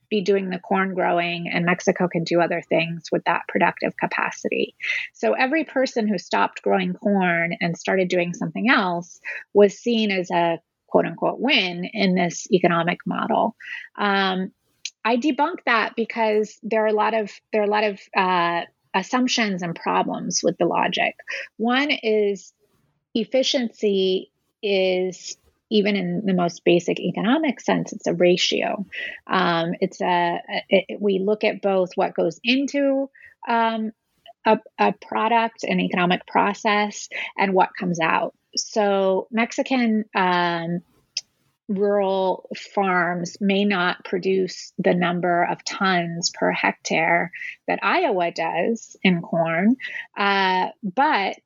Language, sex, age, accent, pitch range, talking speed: English, female, 30-49, American, 175-220 Hz, 135 wpm